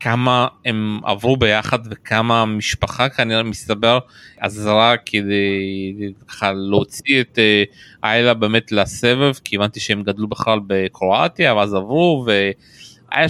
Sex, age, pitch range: male, 30-49, 105-125 Hz